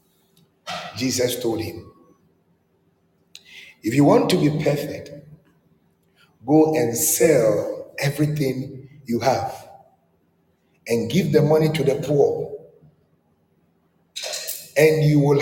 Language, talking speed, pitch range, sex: English, 95 wpm, 125-170 Hz, male